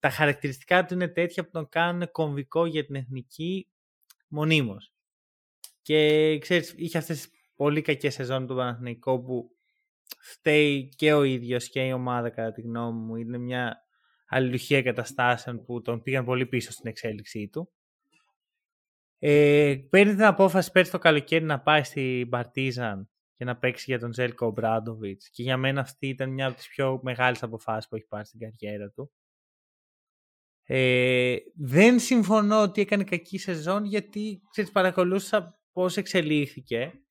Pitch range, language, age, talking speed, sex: 125-180 Hz, Greek, 20-39, 150 wpm, male